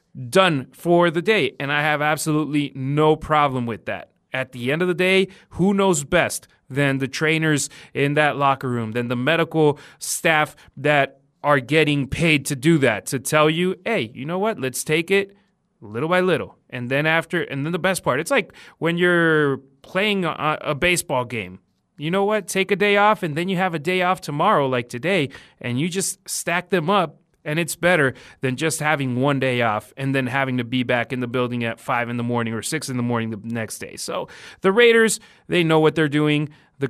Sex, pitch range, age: male, 135-170 Hz, 30-49